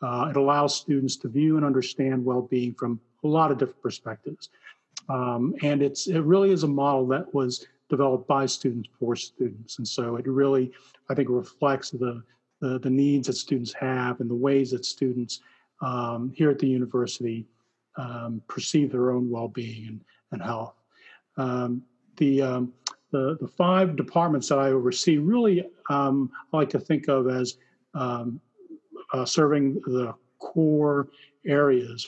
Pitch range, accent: 125-140 Hz, American